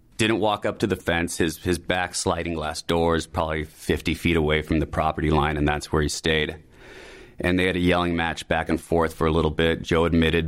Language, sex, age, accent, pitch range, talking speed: English, male, 30-49, American, 75-85 Hz, 230 wpm